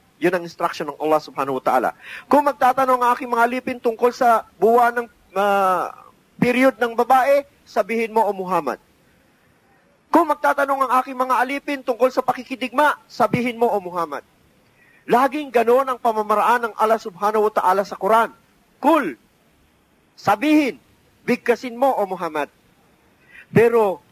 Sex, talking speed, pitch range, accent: male, 150 wpm, 210-265 Hz, native